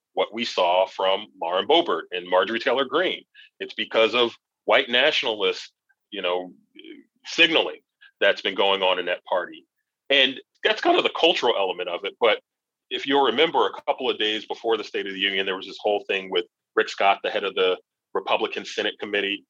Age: 30-49